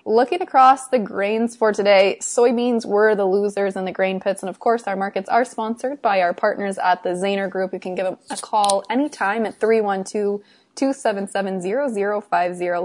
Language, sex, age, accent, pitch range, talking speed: English, female, 20-39, American, 185-220 Hz, 175 wpm